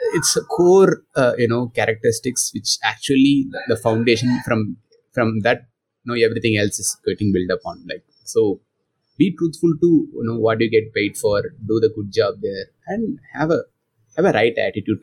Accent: Indian